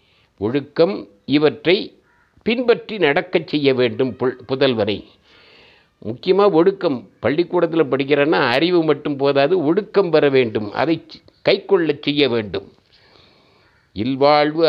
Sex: male